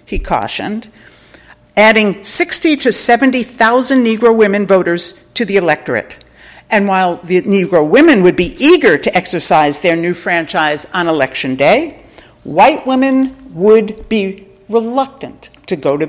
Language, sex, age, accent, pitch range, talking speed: English, female, 60-79, American, 165-235 Hz, 135 wpm